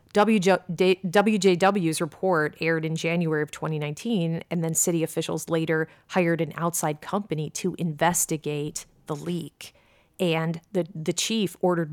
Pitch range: 155-180 Hz